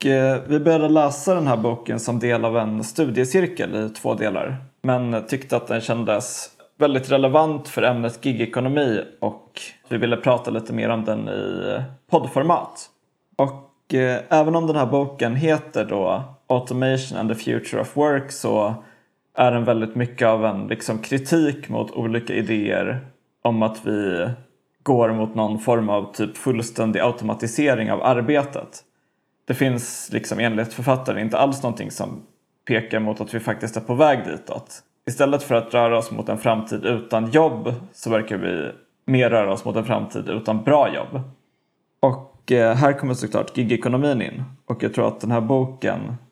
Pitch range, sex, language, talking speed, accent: 115-135 Hz, male, Swedish, 165 wpm, native